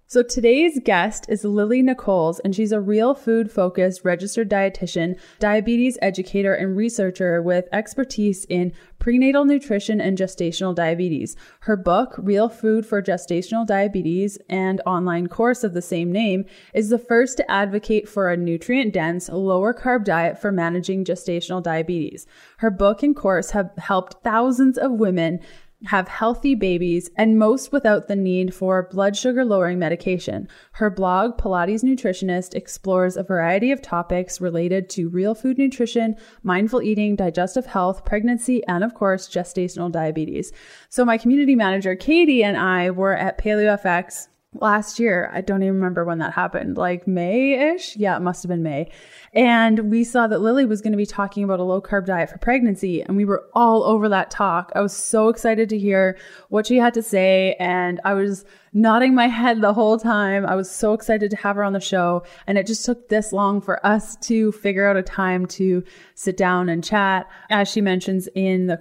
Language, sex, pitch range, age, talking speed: English, female, 185-220 Hz, 20-39, 175 wpm